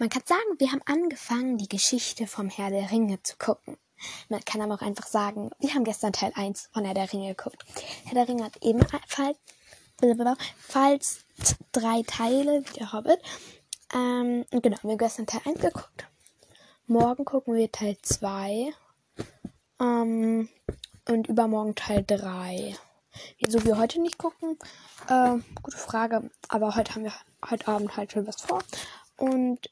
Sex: female